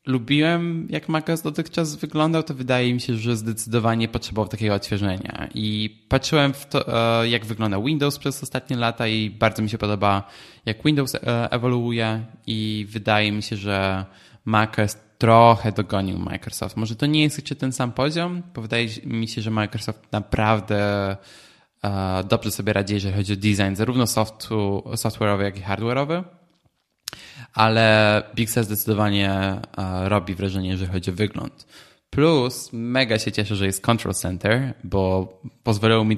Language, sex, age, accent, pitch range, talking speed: Polish, male, 20-39, native, 105-130 Hz, 150 wpm